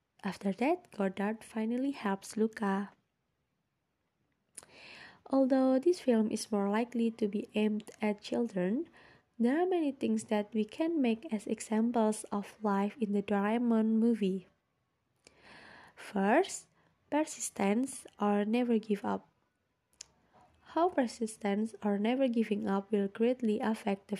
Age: 20-39